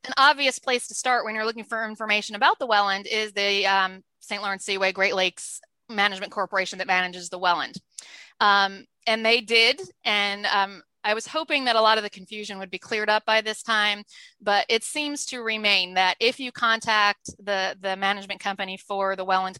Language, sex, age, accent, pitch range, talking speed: English, female, 30-49, American, 195-235 Hz, 200 wpm